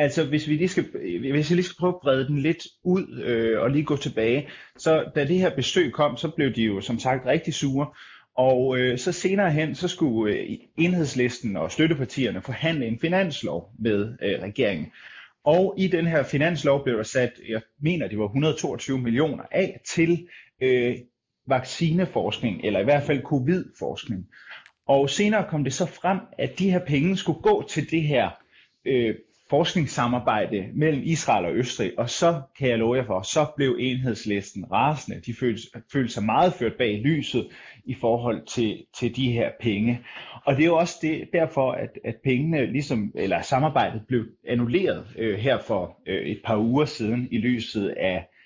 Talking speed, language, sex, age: 180 wpm, Danish, male, 30-49